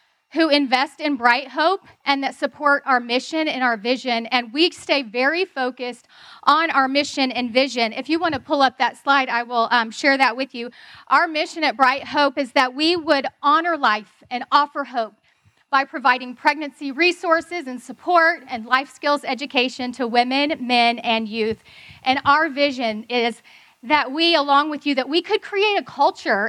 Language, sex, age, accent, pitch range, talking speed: English, female, 40-59, American, 255-315 Hz, 185 wpm